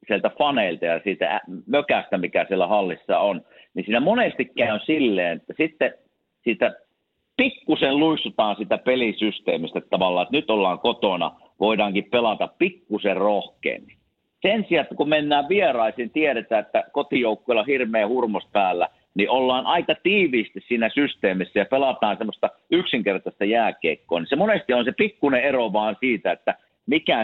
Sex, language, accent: male, Finnish, native